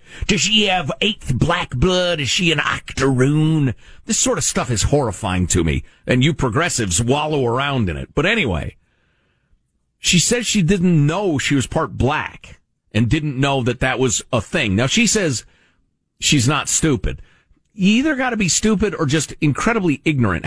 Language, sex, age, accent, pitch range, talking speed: English, male, 50-69, American, 115-190 Hz, 175 wpm